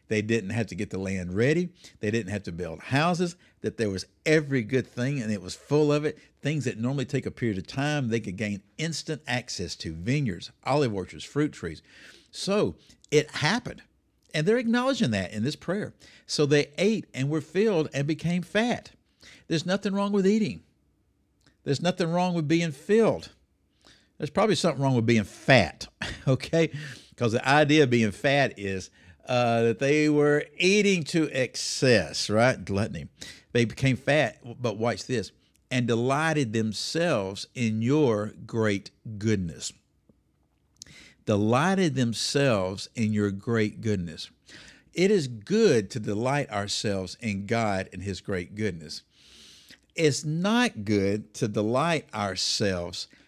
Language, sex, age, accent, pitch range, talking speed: English, male, 60-79, American, 105-155 Hz, 155 wpm